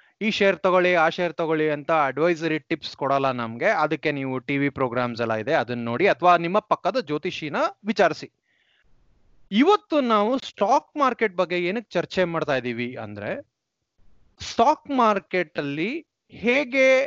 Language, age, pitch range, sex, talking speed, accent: Kannada, 20-39, 140-205 Hz, male, 135 wpm, native